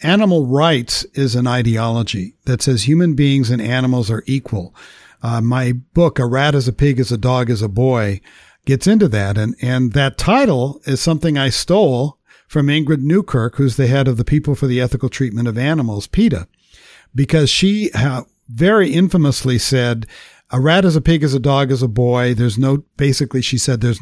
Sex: male